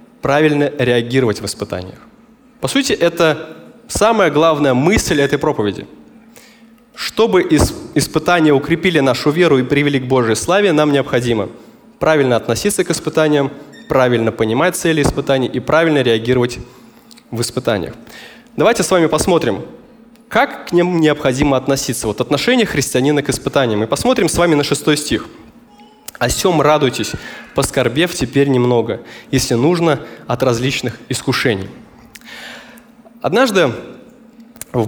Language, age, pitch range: Russian, 20-39, 125-170 Hz